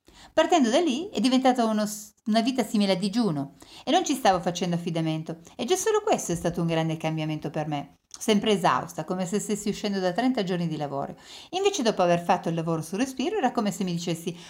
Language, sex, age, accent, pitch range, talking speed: English, female, 40-59, Italian, 170-240 Hz, 210 wpm